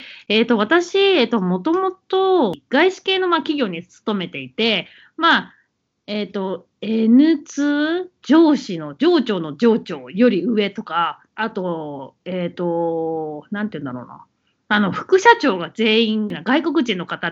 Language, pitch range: Japanese, 195-315 Hz